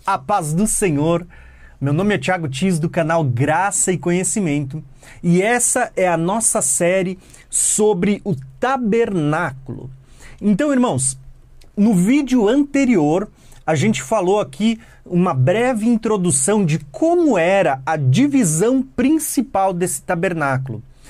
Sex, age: male, 30-49